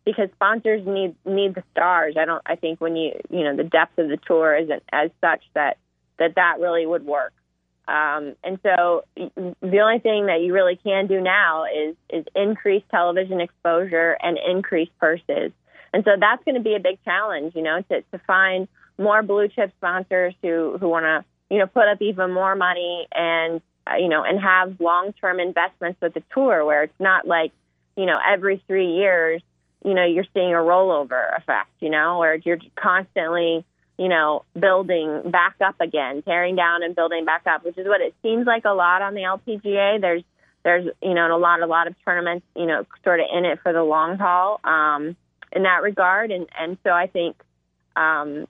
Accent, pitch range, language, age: American, 165-195 Hz, English, 20-39